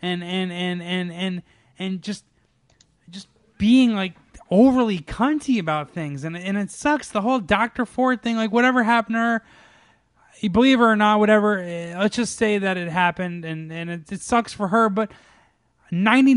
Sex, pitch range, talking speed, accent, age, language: male, 175-225 Hz, 175 wpm, American, 20-39, English